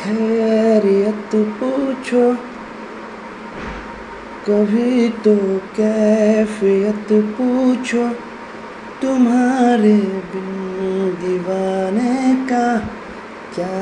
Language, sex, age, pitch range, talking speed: Hindi, male, 30-49, 190-240 Hz, 45 wpm